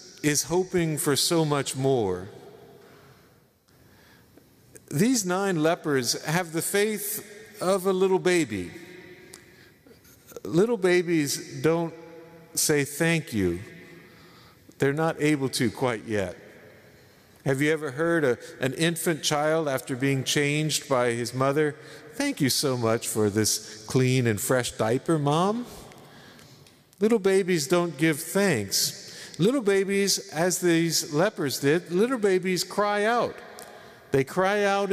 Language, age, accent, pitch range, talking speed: English, 50-69, American, 135-180 Hz, 120 wpm